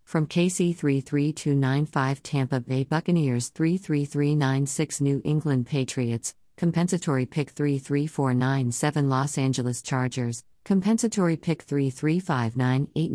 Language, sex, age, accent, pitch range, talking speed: English, female, 40-59, American, 125-155 Hz, 85 wpm